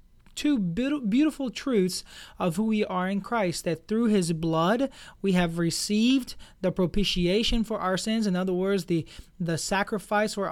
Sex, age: male, 20-39